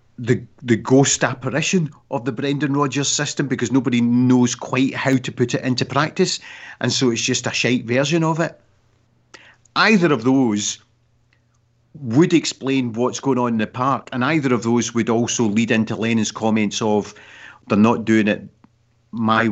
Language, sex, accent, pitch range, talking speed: English, male, British, 110-130 Hz, 170 wpm